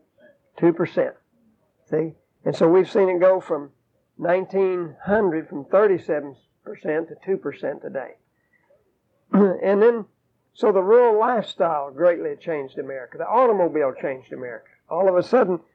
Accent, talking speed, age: American, 120 wpm, 50-69